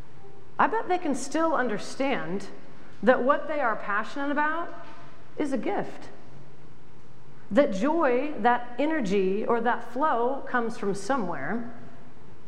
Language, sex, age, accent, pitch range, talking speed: English, female, 40-59, American, 200-265 Hz, 120 wpm